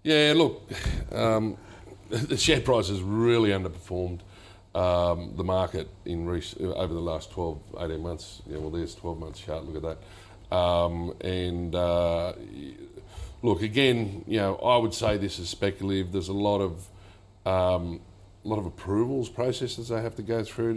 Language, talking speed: English, 165 wpm